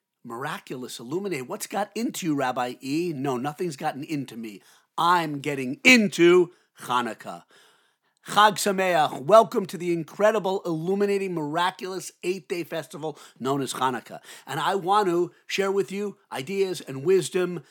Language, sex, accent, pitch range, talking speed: English, male, American, 150-195 Hz, 135 wpm